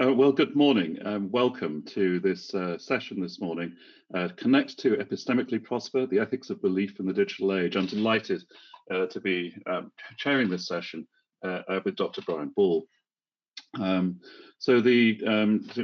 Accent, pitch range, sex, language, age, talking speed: British, 90-135 Hz, male, English, 40-59, 165 wpm